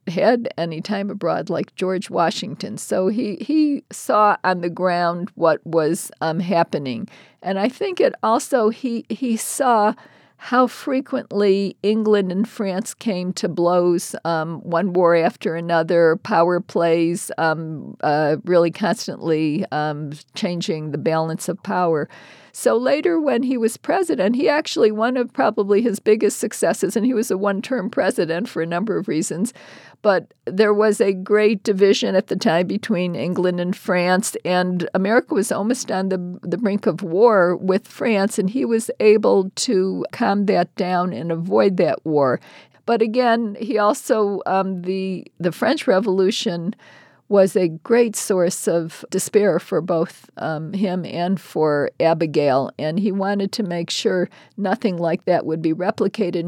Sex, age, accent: female, 50-69, American